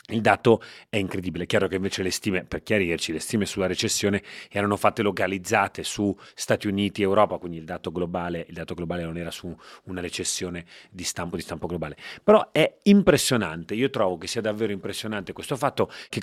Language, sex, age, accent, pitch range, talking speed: Italian, male, 30-49, native, 90-115 Hz, 190 wpm